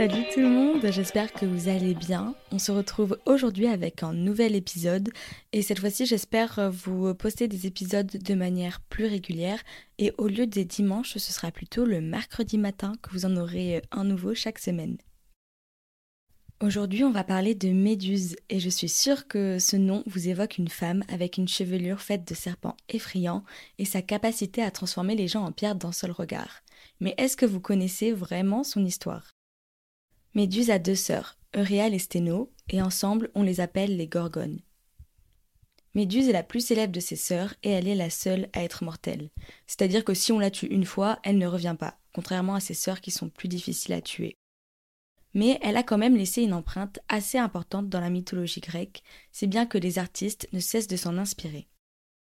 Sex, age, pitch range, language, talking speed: female, 20-39, 180-215 Hz, French, 195 wpm